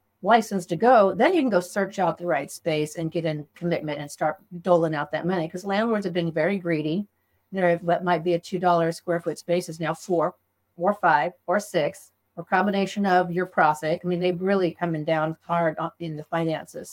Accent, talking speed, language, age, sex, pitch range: American, 220 wpm, English, 50-69, female, 160-185 Hz